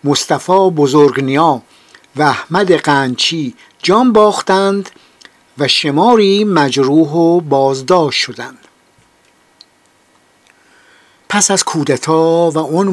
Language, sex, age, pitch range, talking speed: Persian, male, 50-69, 145-195 Hz, 85 wpm